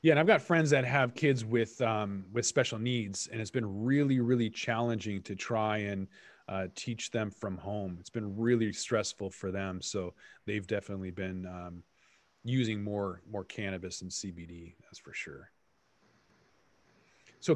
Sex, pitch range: male, 110-140 Hz